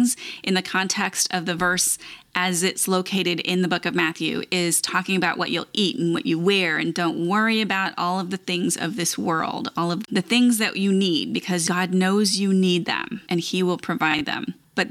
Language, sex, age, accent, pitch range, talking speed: English, female, 30-49, American, 170-200 Hz, 215 wpm